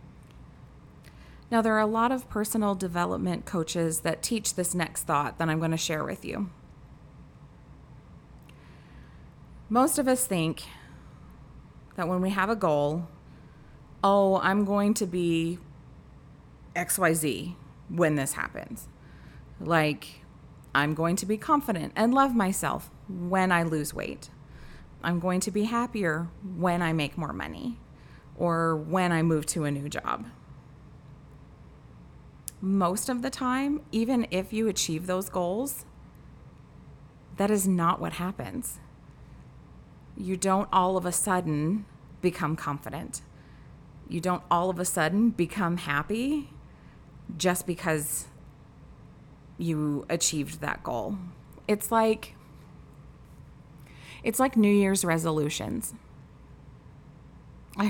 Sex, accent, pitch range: female, American, 160-205 Hz